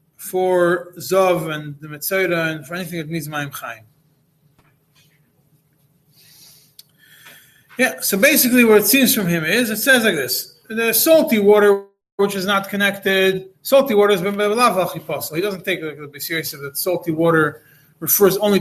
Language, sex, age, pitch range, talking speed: English, male, 30-49, 155-200 Hz, 150 wpm